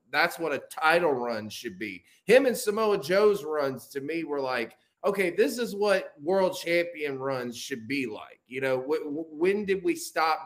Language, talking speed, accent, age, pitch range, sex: English, 185 wpm, American, 20-39, 135-180 Hz, male